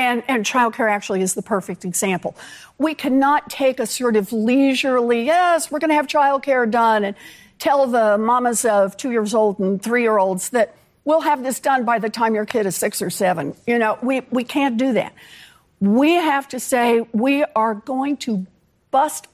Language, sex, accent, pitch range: English, female, American, 215-280 Hz